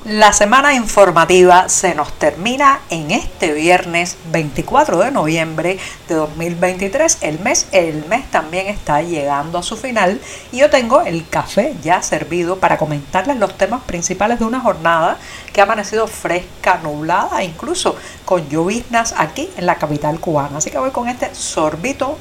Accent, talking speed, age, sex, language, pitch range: American, 155 wpm, 50-69, female, Spanish, 160-225 Hz